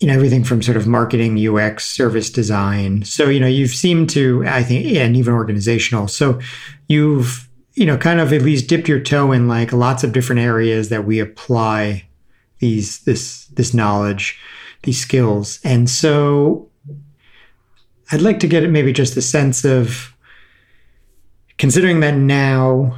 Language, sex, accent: English, male, American